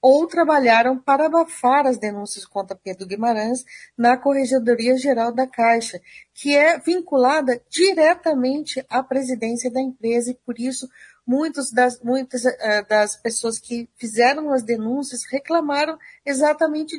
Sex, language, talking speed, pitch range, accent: female, Portuguese, 130 wpm, 230-275 Hz, Brazilian